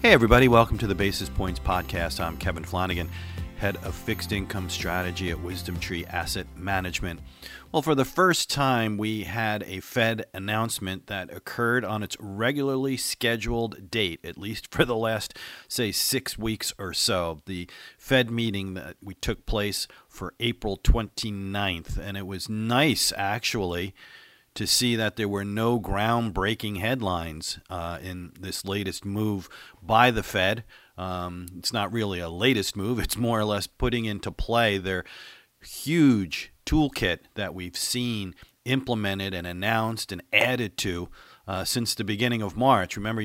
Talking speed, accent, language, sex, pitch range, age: 155 wpm, American, English, male, 90-115 Hz, 40-59